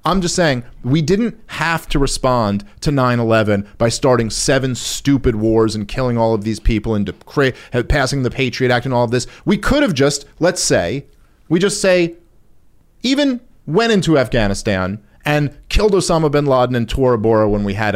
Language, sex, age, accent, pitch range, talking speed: English, male, 40-59, American, 120-170 Hz, 185 wpm